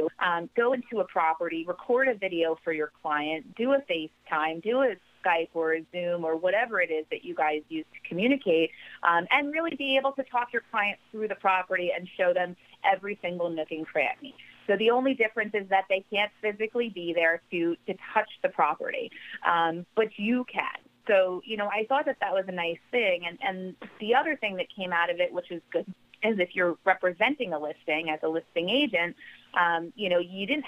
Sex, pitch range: female, 160-215 Hz